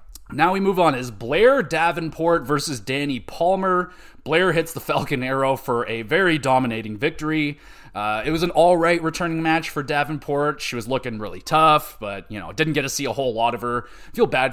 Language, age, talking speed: English, 30-49, 200 wpm